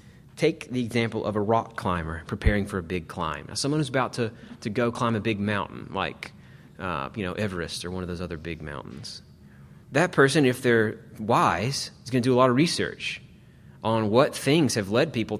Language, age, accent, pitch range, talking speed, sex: English, 30-49, American, 100-125 Hz, 205 wpm, male